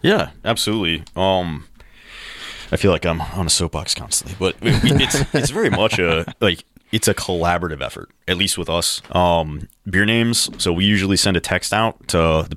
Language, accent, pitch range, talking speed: English, American, 80-90 Hz, 185 wpm